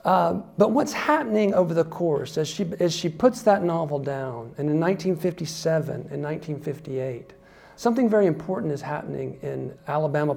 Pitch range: 145-195 Hz